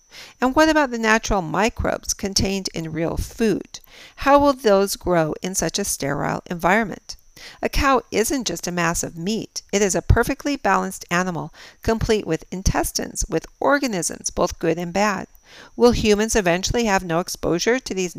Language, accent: English, American